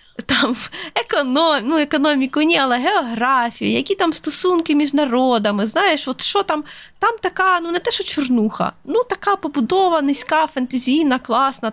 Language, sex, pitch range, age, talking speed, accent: Ukrainian, female, 235-310 Hz, 20-39, 150 wpm, native